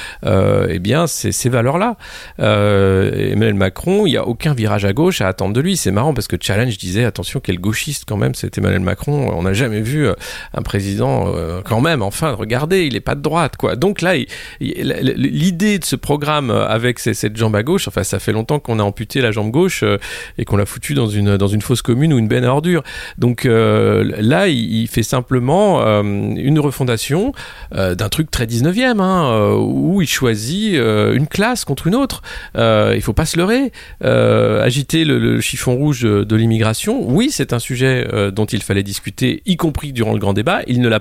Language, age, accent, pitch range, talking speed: French, 40-59, French, 105-145 Hz, 215 wpm